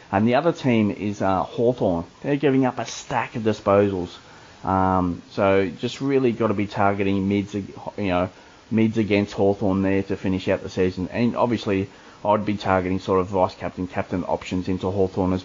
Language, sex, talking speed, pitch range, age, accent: English, male, 185 wpm, 95-120 Hz, 30-49, Australian